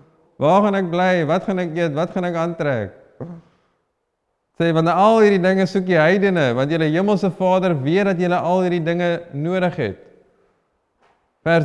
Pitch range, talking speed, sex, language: 140-175 Hz, 170 wpm, male, English